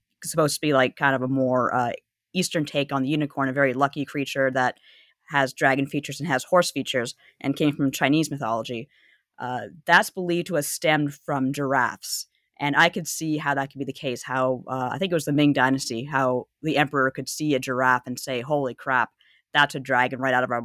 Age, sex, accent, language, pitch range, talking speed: 30-49, female, American, English, 130-155 Hz, 220 wpm